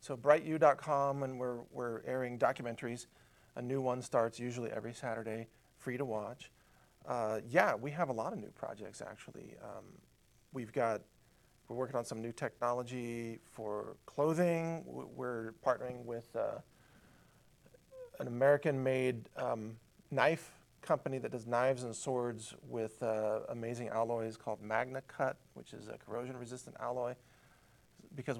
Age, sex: 40-59, male